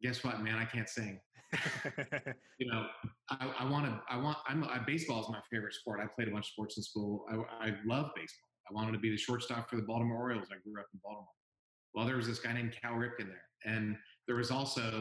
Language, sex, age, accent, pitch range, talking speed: English, male, 40-59, American, 105-125 Hz, 245 wpm